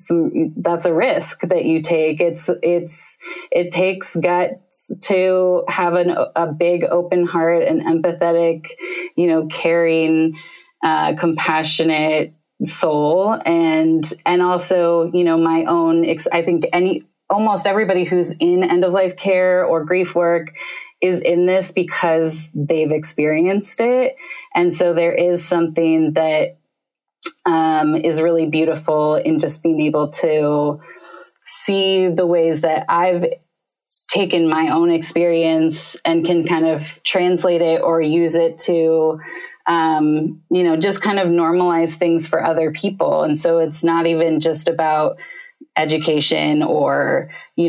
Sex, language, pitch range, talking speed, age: female, English, 160-180 Hz, 140 wpm, 20-39